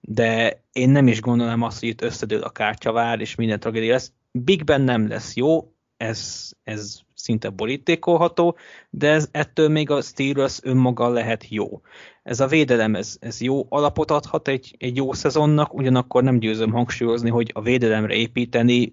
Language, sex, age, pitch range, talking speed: Hungarian, male, 20-39, 115-145 Hz, 165 wpm